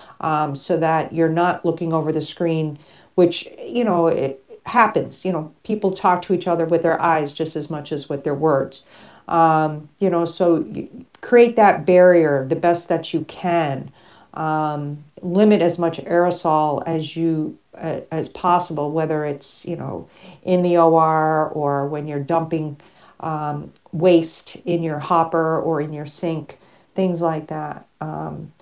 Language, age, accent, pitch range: English, 40-59, American, 155-185 Hz